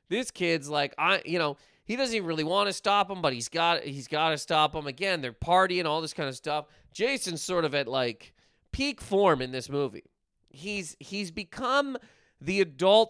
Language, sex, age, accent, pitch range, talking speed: English, male, 30-49, American, 150-220 Hz, 205 wpm